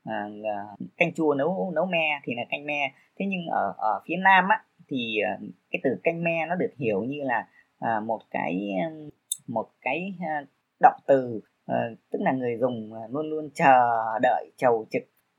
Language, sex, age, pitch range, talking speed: Vietnamese, female, 20-39, 120-155 Hz, 165 wpm